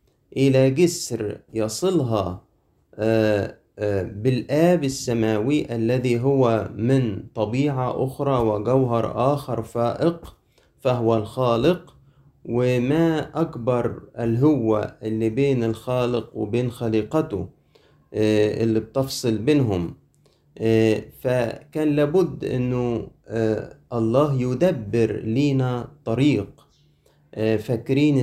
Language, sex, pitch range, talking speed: Arabic, male, 110-140 Hz, 70 wpm